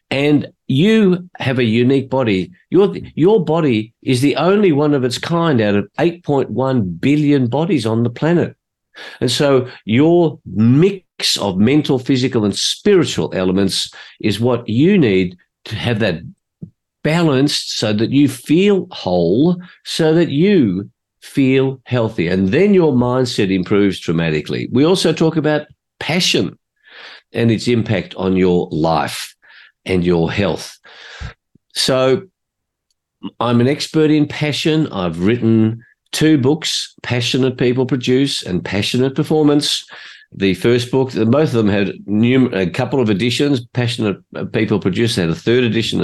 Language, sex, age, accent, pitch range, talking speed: English, male, 50-69, Australian, 105-150 Hz, 140 wpm